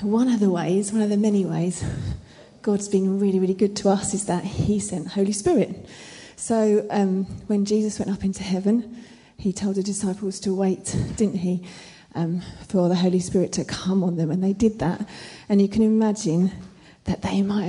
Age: 30-49